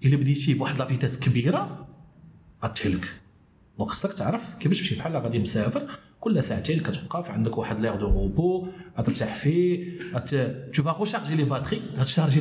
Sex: male